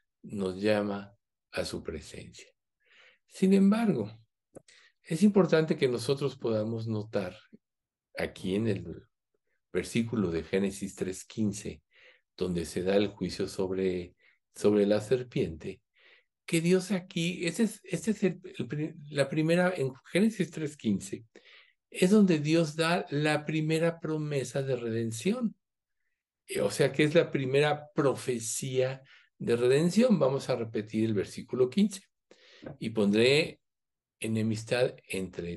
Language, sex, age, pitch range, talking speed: Spanish, male, 60-79, 110-170 Hz, 120 wpm